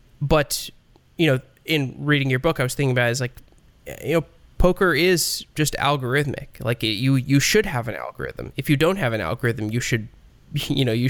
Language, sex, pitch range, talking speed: English, male, 115-145 Hz, 205 wpm